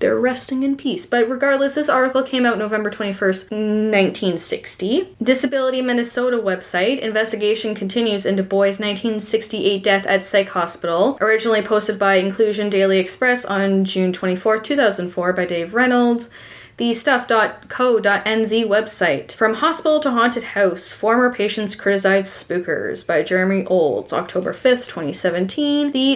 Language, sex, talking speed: English, female, 130 wpm